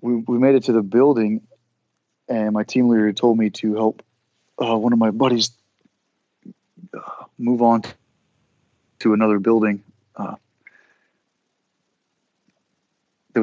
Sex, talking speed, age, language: male, 125 wpm, 30-49, English